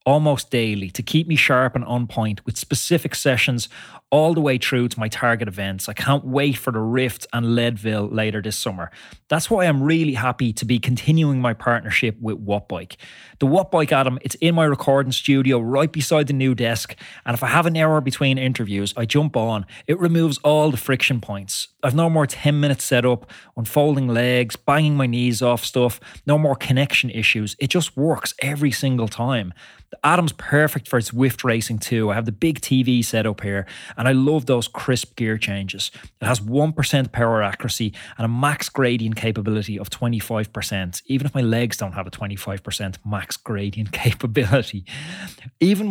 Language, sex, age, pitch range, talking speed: English, male, 20-39, 110-140 Hz, 190 wpm